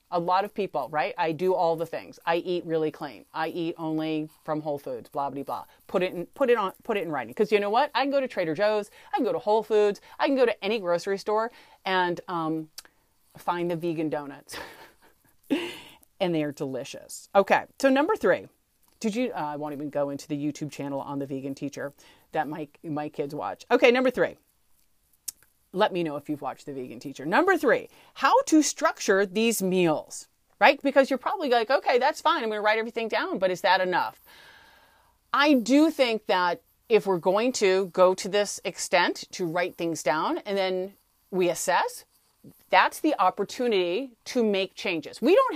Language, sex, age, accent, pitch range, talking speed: English, female, 30-49, American, 165-255 Hz, 205 wpm